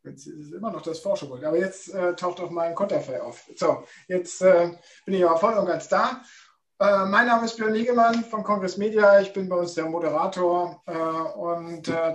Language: German